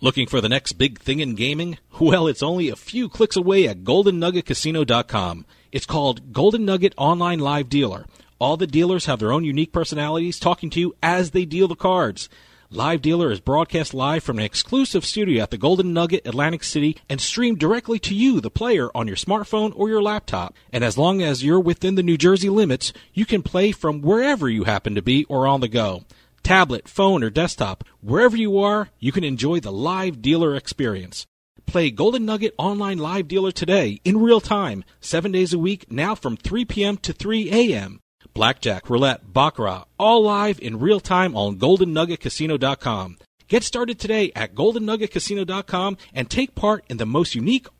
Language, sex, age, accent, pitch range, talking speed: English, male, 40-59, American, 130-195 Hz, 185 wpm